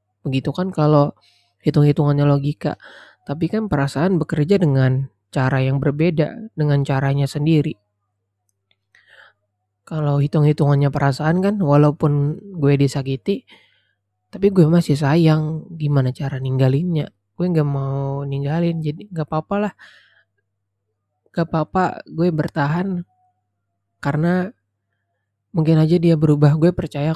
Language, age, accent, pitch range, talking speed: Indonesian, 20-39, native, 110-155 Hz, 110 wpm